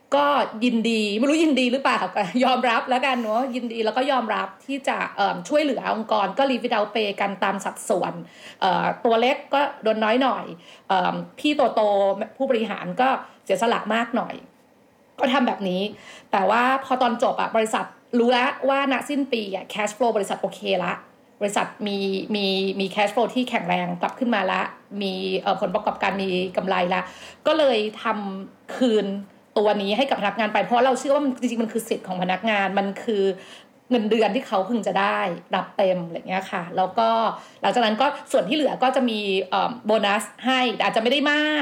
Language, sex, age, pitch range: Thai, female, 30-49, 200-255 Hz